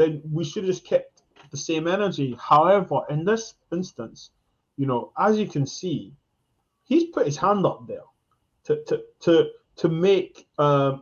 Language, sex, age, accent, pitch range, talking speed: English, male, 20-39, British, 140-215 Hz, 170 wpm